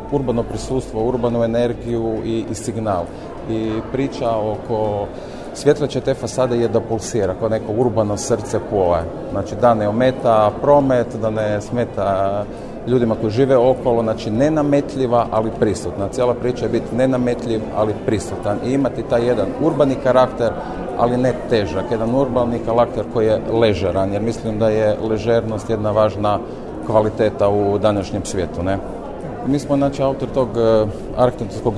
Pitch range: 110-125 Hz